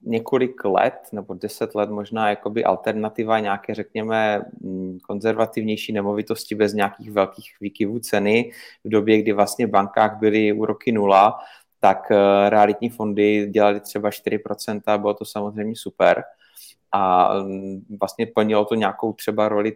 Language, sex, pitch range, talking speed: Czech, male, 100-110 Hz, 130 wpm